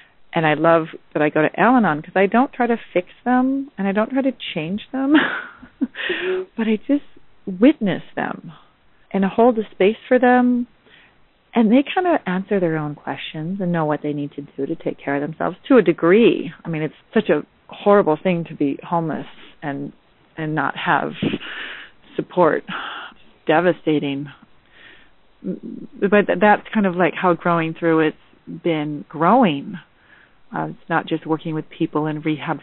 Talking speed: 170 wpm